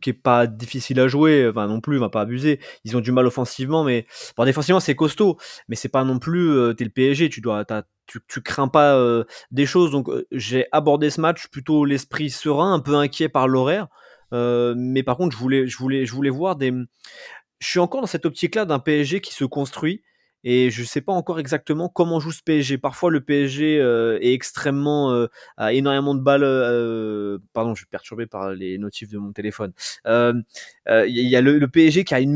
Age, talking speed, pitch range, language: 20-39, 225 wpm, 120-150 Hz, French